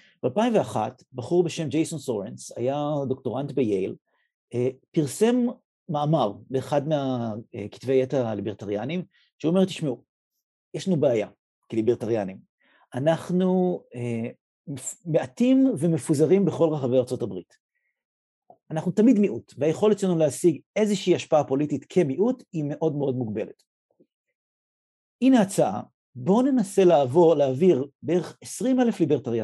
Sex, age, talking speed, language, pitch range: male, 50-69, 100 wpm, English, 130-185 Hz